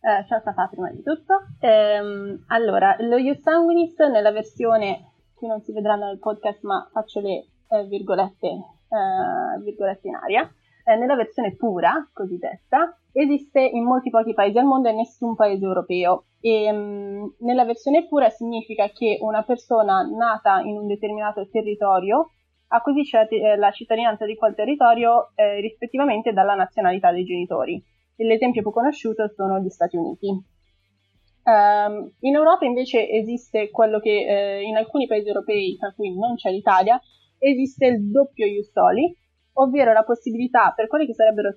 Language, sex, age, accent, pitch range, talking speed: Italian, female, 20-39, native, 200-270 Hz, 155 wpm